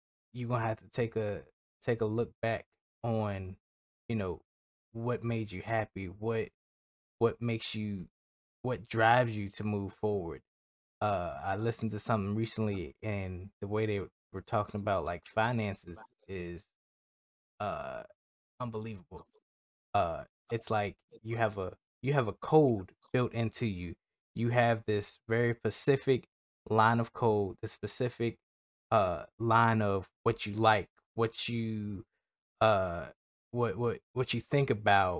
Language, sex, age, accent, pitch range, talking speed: English, male, 20-39, American, 100-115 Hz, 140 wpm